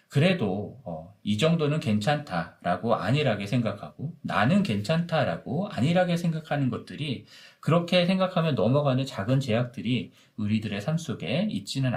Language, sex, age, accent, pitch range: Korean, male, 40-59, native, 110-160 Hz